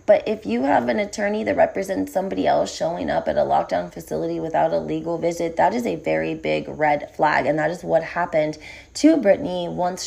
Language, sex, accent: English, female, American